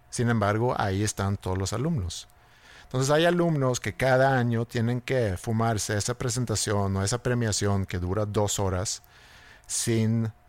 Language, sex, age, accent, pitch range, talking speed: Spanish, male, 50-69, Mexican, 100-125 Hz, 150 wpm